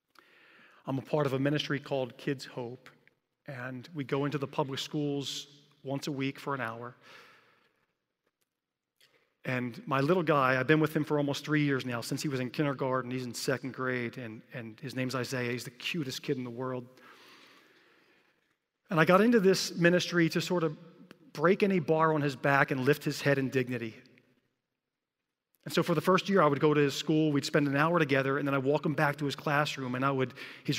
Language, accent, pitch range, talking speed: English, American, 130-160 Hz, 210 wpm